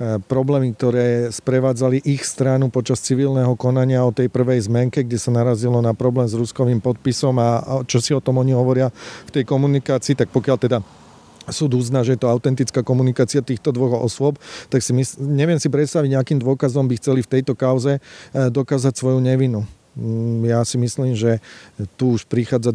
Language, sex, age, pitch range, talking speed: Slovak, male, 40-59, 115-130 Hz, 175 wpm